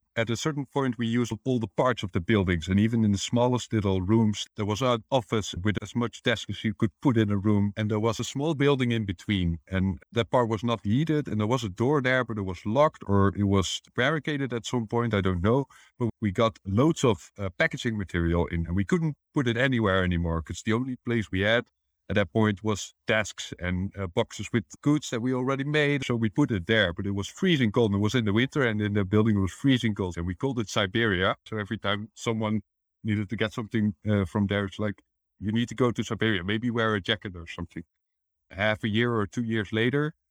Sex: male